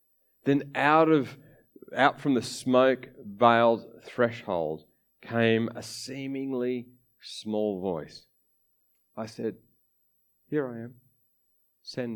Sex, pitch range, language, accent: male, 115-165 Hz, English, Australian